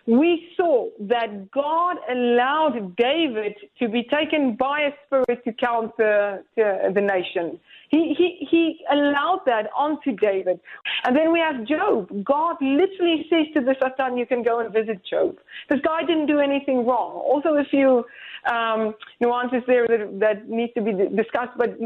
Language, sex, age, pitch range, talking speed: English, female, 30-49, 230-310 Hz, 165 wpm